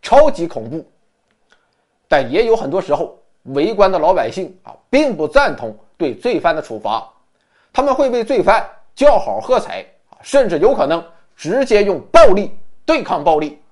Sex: male